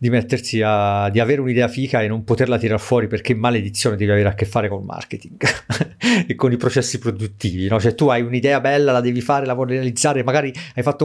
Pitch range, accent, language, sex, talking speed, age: 110-150 Hz, native, Italian, male, 230 wpm, 40-59